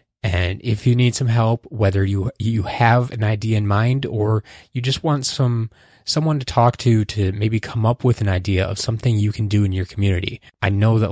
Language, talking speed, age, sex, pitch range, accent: English, 220 wpm, 20-39, male, 100-120 Hz, American